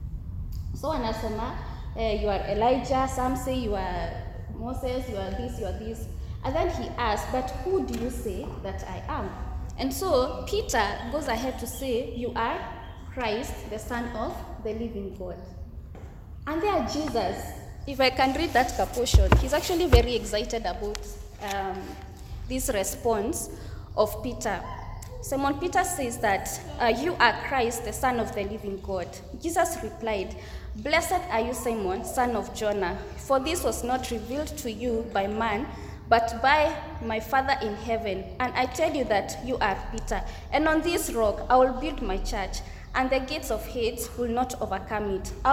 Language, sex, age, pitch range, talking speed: English, female, 20-39, 225-280 Hz, 170 wpm